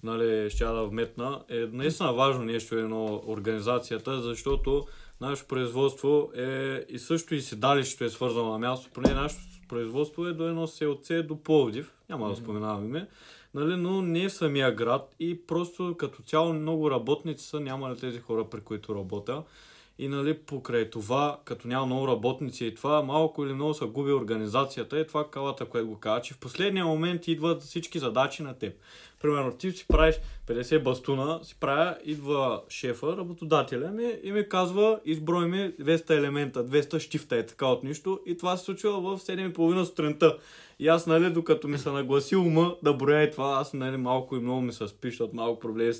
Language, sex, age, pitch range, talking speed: Bulgarian, male, 20-39, 125-165 Hz, 185 wpm